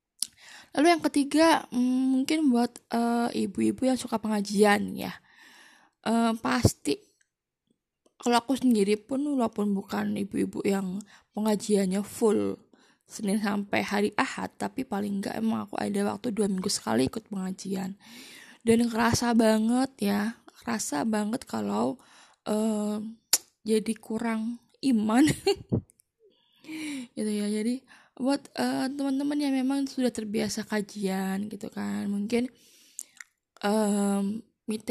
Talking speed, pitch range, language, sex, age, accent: 110 wpm, 205-240 Hz, Indonesian, female, 10-29, native